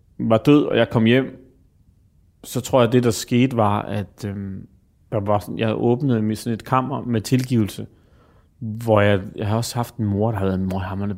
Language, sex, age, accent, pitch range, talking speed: Danish, male, 30-49, native, 105-125 Hz, 215 wpm